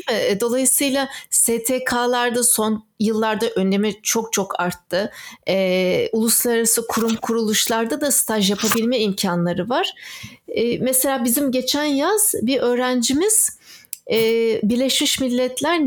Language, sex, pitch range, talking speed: Turkish, female, 190-260 Hz, 100 wpm